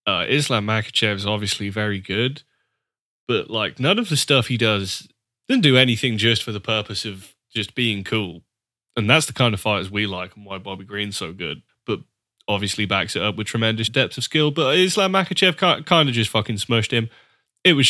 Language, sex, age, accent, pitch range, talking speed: English, male, 20-39, British, 105-120 Hz, 205 wpm